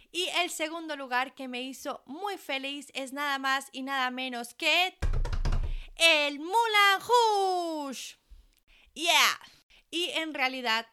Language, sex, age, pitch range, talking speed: Spanish, female, 20-39, 220-275 Hz, 120 wpm